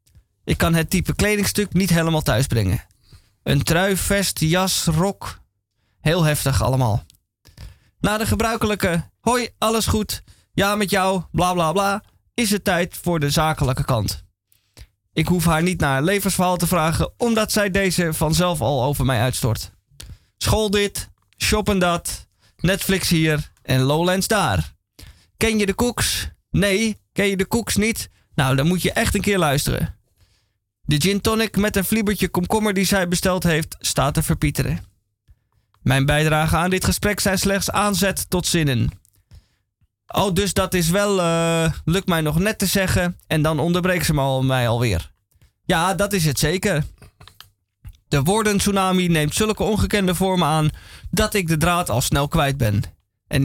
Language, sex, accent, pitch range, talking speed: Dutch, male, Dutch, 130-195 Hz, 160 wpm